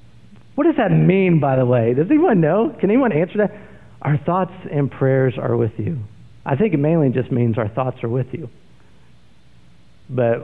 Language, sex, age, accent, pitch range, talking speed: English, male, 50-69, American, 115-165 Hz, 190 wpm